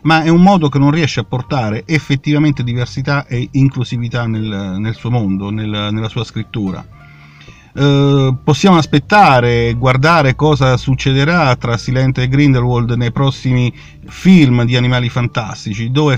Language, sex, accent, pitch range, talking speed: Italian, male, native, 110-145 Hz, 140 wpm